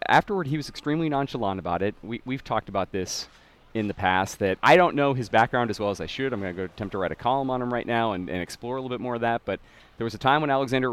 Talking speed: 295 wpm